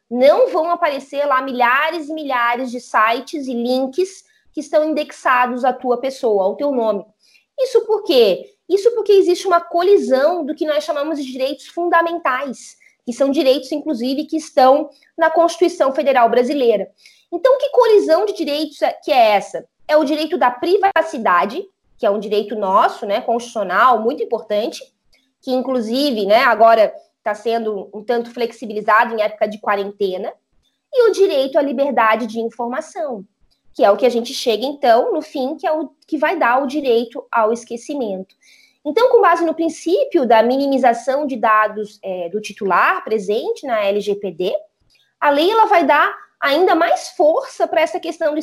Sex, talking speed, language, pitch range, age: female, 165 wpm, Portuguese, 235-330 Hz, 20-39